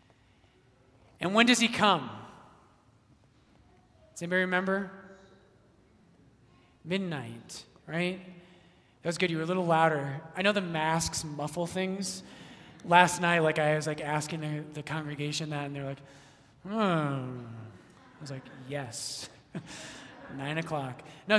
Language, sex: English, male